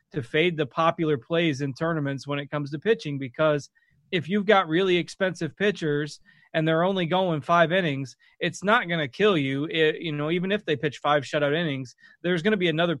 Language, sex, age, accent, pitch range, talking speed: English, male, 20-39, American, 150-185 Hz, 210 wpm